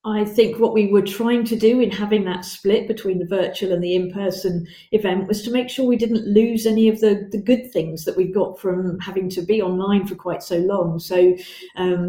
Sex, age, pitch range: female, 40-59, 185-220 Hz